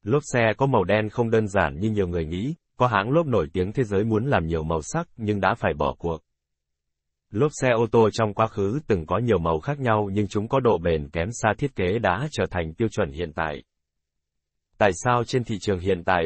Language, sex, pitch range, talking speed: Vietnamese, male, 85-120 Hz, 240 wpm